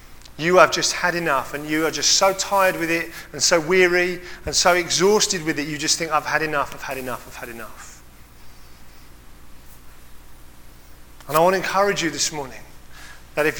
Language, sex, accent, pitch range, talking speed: English, male, British, 125-190 Hz, 190 wpm